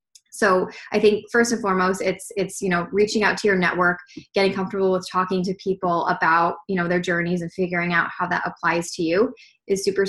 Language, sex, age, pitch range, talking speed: English, female, 20-39, 180-210 Hz, 215 wpm